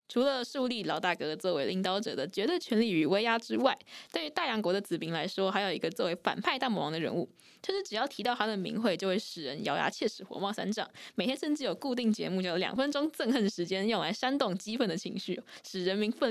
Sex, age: female, 20-39